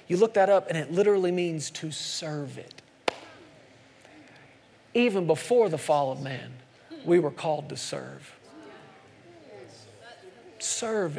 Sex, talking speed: male, 125 wpm